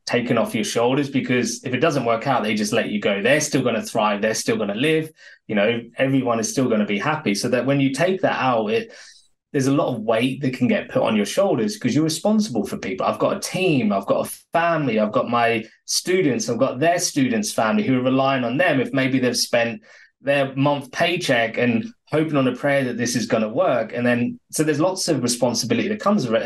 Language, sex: English, male